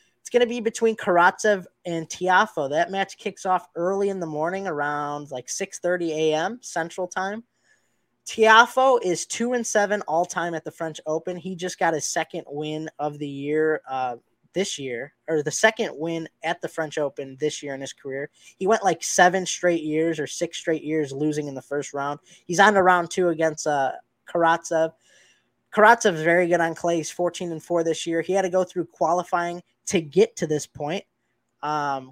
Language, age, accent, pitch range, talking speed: English, 20-39, American, 155-185 Hz, 195 wpm